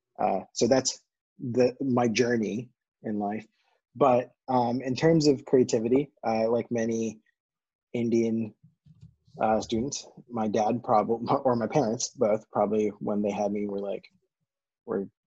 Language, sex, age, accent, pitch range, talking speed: English, male, 20-39, American, 100-130 Hz, 140 wpm